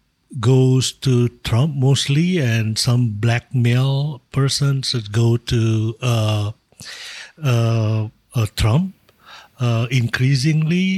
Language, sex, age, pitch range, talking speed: English, male, 60-79, 115-140 Hz, 100 wpm